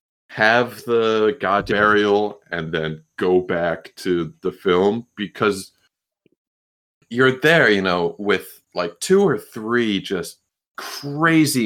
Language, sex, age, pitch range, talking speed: English, male, 20-39, 90-115 Hz, 120 wpm